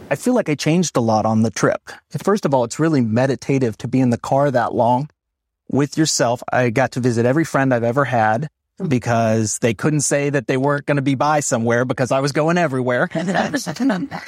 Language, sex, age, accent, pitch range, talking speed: English, male, 30-49, American, 120-145 Hz, 220 wpm